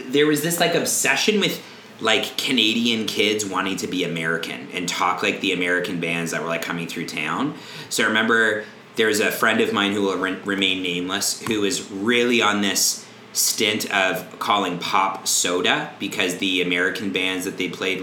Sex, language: male, English